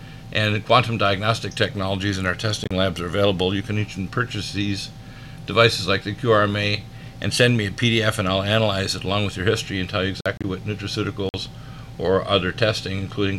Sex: male